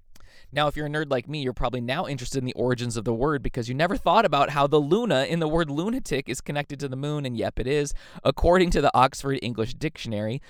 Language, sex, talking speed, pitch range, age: English, male, 250 wpm, 110-145 Hz, 20-39